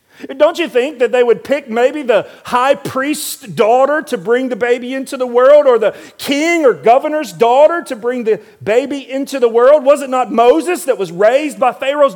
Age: 40-59